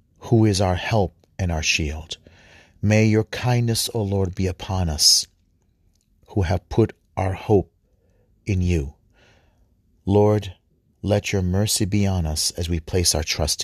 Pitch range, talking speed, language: 85-105 Hz, 150 wpm, English